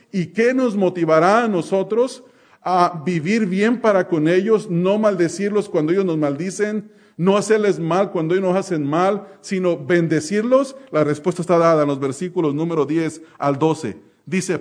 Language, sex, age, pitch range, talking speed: English, male, 40-59, 165-215 Hz, 165 wpm